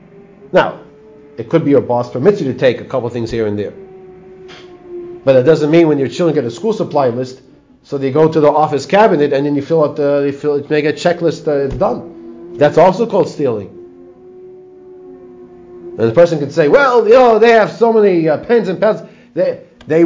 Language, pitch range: English, 145-205 Hz